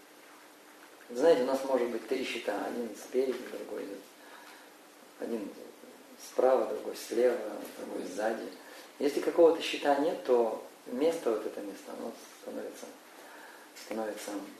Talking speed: 120 wpm